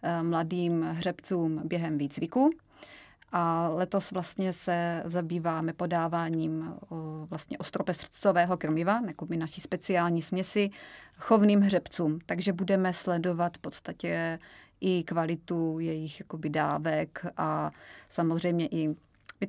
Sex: female